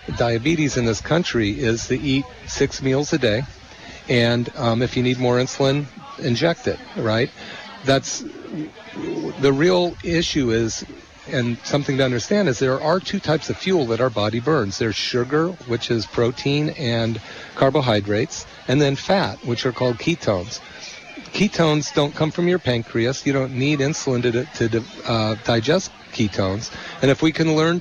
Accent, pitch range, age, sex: American, 115-145 Hz, 40-59, male